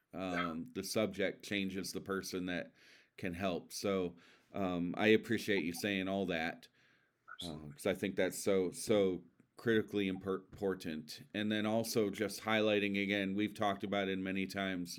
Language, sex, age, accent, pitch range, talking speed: English, male, 40-59, American, 95-110 Hz, 150 wpm